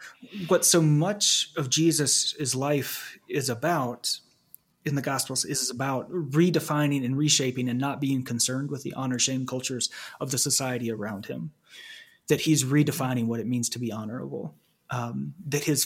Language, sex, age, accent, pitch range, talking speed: English, male, 30-49, American, 125-155 Hz, 165 wpm